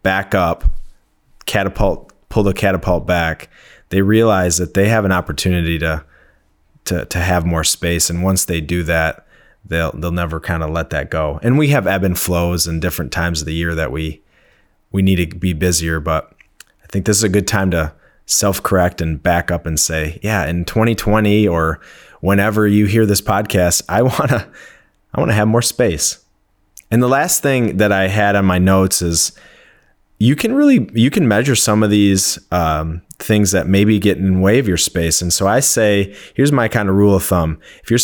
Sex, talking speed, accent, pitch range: male, 205 wpm, American, 85-105 Hz